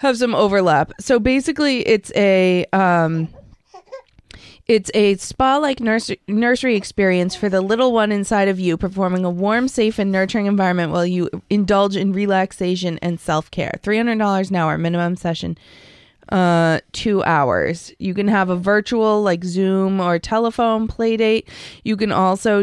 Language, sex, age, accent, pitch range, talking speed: English, female, 20-39, American, 185-230 Hz, 160 wpm